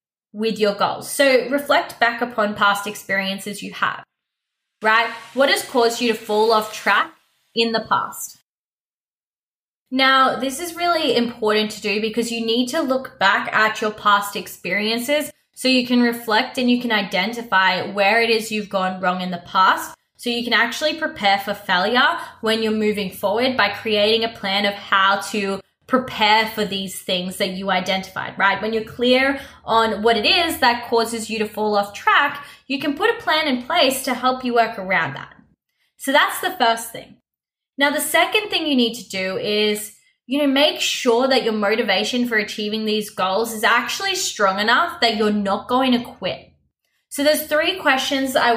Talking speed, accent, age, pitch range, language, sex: 185 wpm, Australian, 10-29, 205-260 Hz, English, female